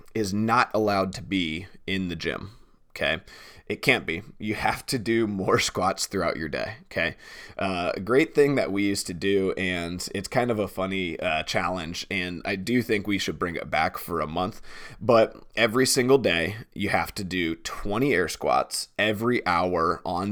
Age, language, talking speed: 20-39, English, 190 wpm